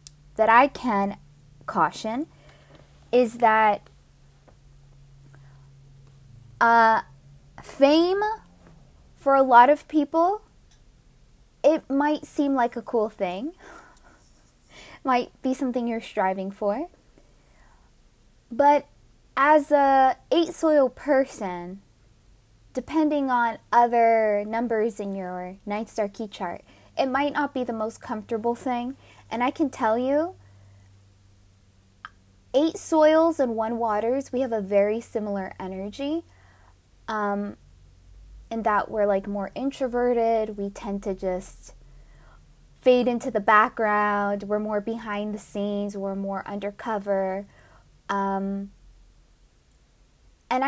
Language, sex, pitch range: English, female, 195-265 Hz